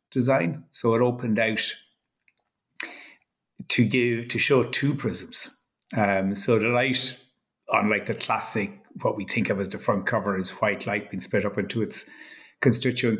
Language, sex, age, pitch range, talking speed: English, male, 60-79, 105-135 Hz, 160 wpm